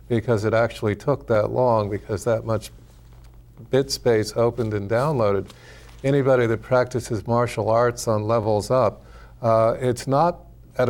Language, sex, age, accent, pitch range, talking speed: English, male, 50-69, American, 105-120 Hz, 145 wpm